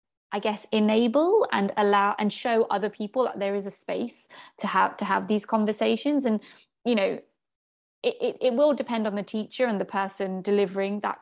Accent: British